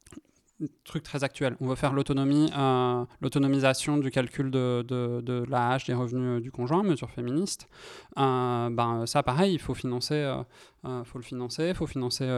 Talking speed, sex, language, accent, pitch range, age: 170 wpm, male, French, French, 125-145 Hz, 20-39